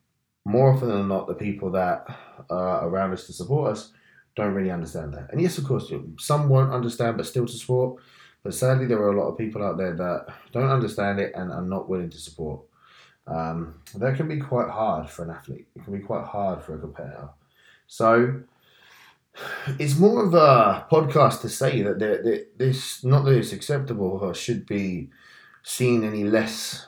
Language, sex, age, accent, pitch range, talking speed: English, male, 20-39, British, 90-120 Hz, 190 wpm